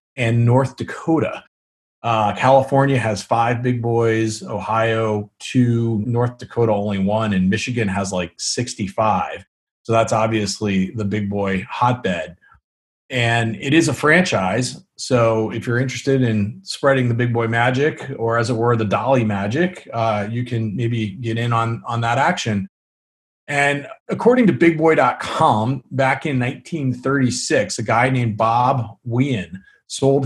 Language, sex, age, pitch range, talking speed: English, male, 30-49, 110-135 Hz, 145 wpm